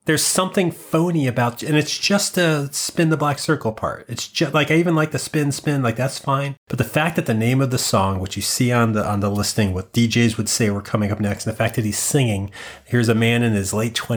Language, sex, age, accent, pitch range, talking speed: English, male, 30-49, American, 105-145 Hz, 260 wpm